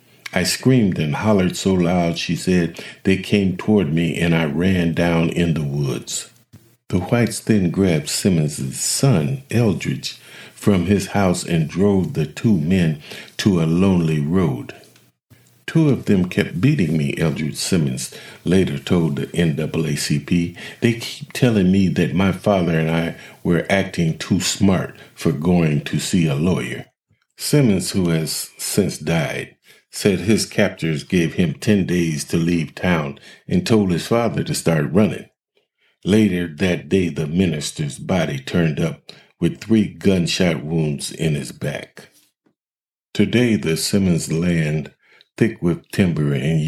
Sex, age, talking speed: male, 50-69, 145 wpm